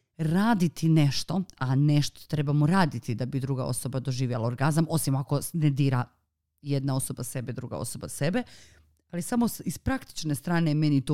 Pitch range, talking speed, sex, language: 140-175 Hz, 160 wpm, female, Croatian